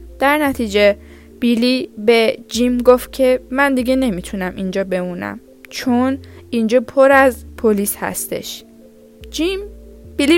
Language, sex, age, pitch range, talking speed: Persian, female, 10-29, 190-265 Hz, 115 wpm